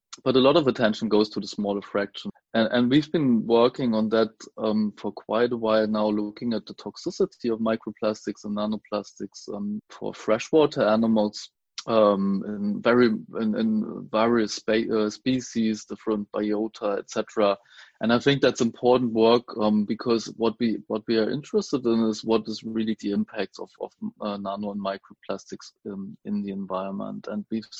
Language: English